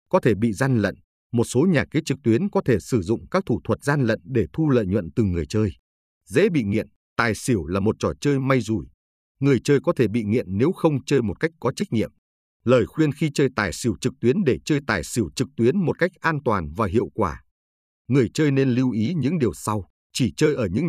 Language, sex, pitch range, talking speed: Vietnamese, male, 100-140 Hz, 245 wpm